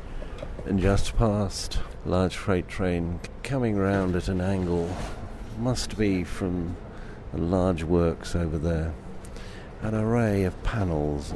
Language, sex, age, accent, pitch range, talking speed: English, male, 50-69, British, 75-95 Hz, 125 wpm